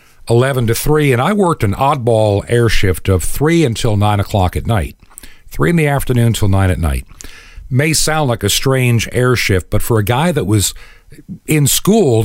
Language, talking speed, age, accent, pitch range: English, 195 wpm, 50-69, American, 100-140 Hz